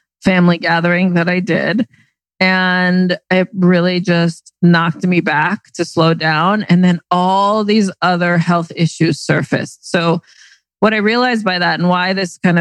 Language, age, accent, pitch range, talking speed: English, 40-59, American, 170-195 Hz, 155 wpm